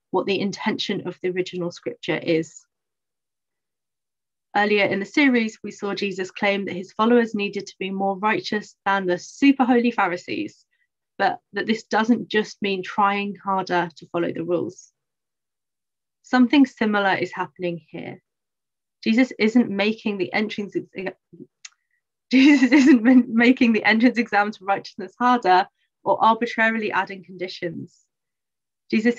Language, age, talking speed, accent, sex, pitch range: English, 30-49, 135 wpm, British, female, 185-230 Hz